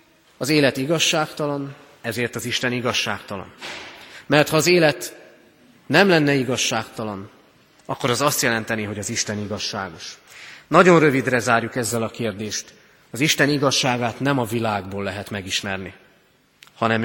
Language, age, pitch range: Hungarian, 30-49, 110-155 Hz